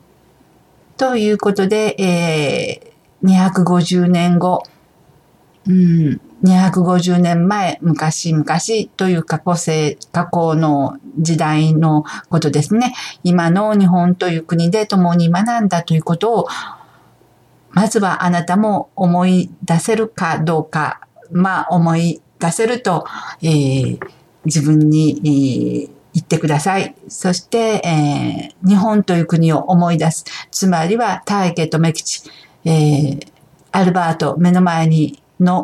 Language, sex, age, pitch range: Japanese, female, 50-69, 160-195 Hz